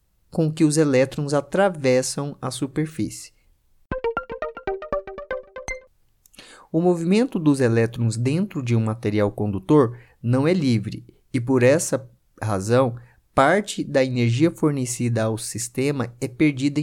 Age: 20-39